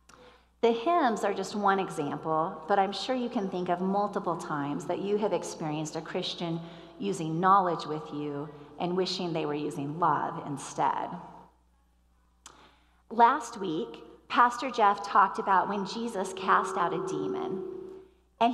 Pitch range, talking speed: 165-225 Hz, 145 wpm